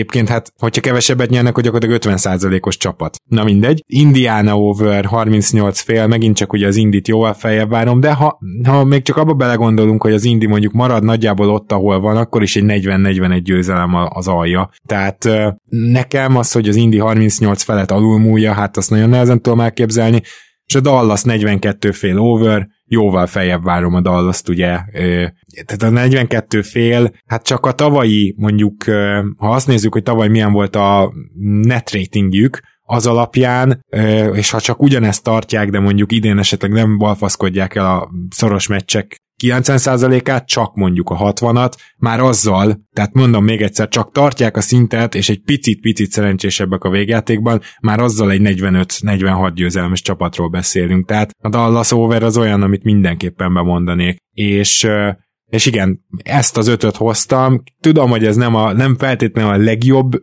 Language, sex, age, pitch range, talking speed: Hungarian, male, 20-39, 95-115 Hz, 165 wpm